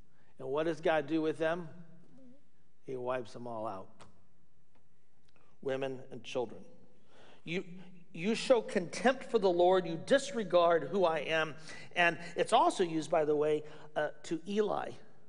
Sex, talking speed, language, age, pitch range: male, 145 wpm, English, 50-69, 130-210 Hz